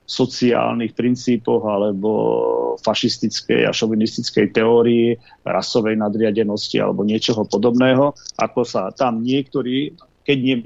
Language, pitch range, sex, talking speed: Slovak, 105-130 Hz, male, 100 wpm